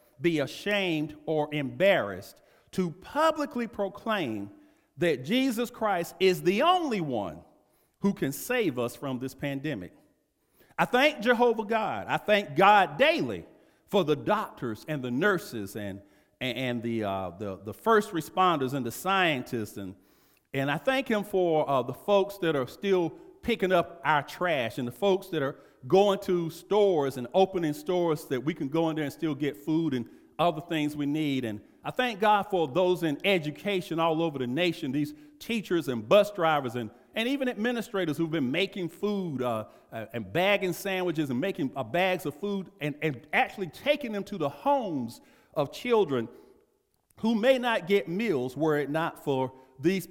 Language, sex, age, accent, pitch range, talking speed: English, male, 50-69, American, 140-205 Hz, 170 wpm